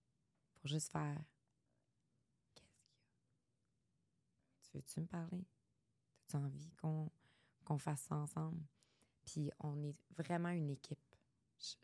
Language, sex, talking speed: French, female, 125 wpm